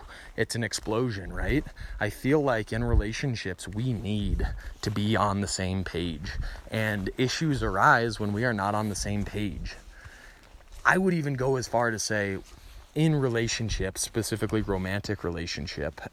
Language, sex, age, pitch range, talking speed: English, male, 20-39, 95-130 Hz, 155 wpm